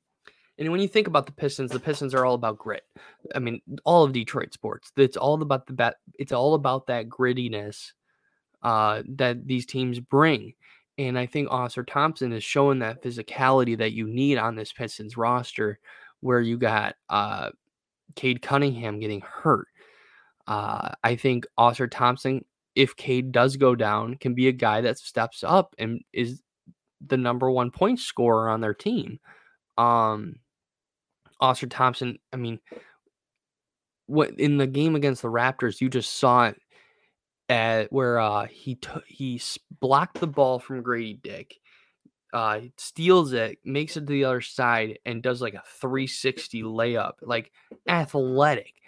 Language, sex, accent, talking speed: English, male, American, 155 wpm